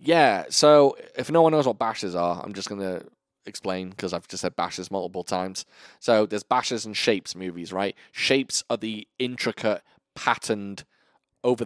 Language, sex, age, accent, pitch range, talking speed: English, male, 20-39, British, 90-110 Hz, 175 wpm